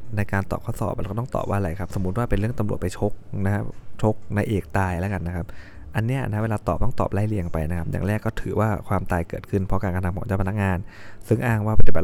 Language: Thai